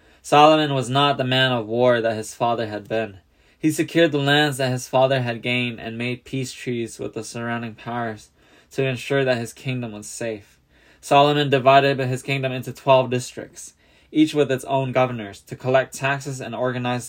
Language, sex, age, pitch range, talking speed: English, male, 10-29, 115-135 Hz, 185 wpm